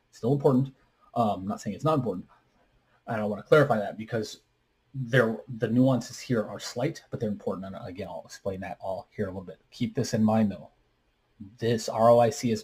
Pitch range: 105-125 Hz